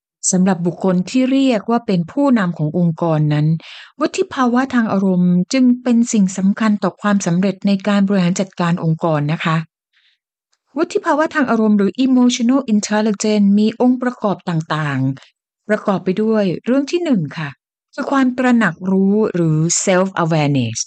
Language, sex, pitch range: Thai, female, 170-235 Hz